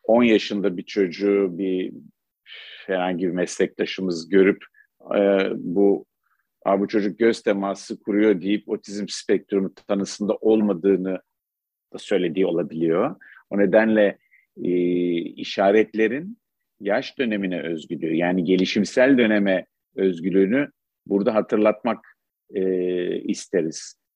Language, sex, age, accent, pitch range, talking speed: Turkish, male, 50-69, native, 95-110 Hz, 95 wpm